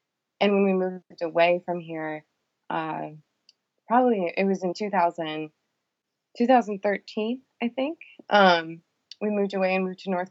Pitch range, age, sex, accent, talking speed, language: 160-185 Hz, 20-39, female, American, 135 wpm, English